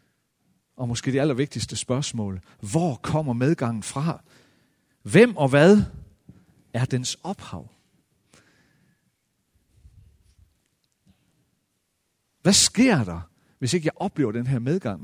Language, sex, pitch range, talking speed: Danish, male, 110-180 Hz, 100 wpm